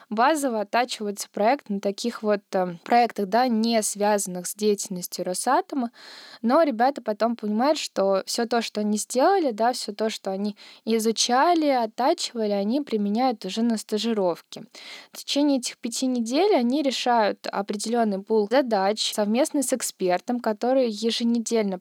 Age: 20-39